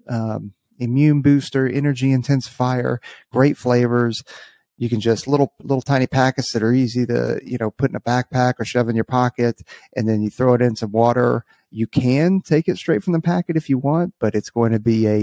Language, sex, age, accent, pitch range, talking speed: English, male, 30-49, American, 110-130 Hz, 215 wpm